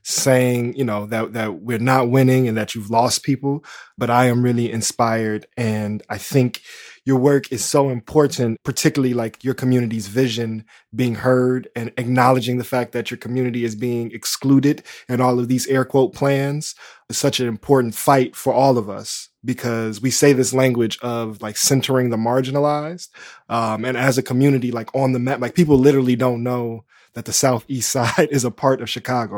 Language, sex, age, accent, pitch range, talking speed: English, male, 20-39, American, 115-130 Hz, 190 wpm